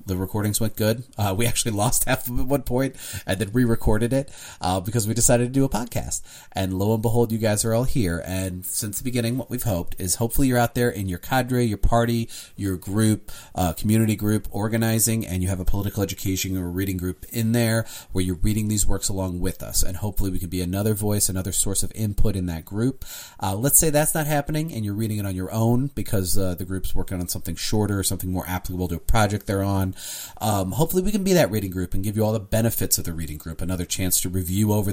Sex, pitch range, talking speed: male, 95-115 Hz, 245 wpm